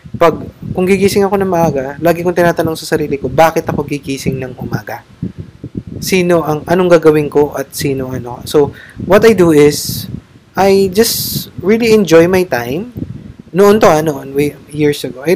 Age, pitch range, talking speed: 20-39, 140-195 Hz, 155 wpm